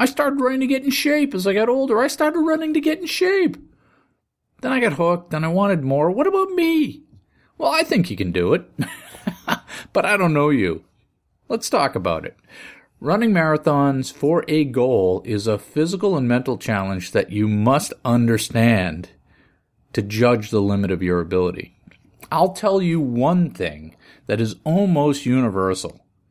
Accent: American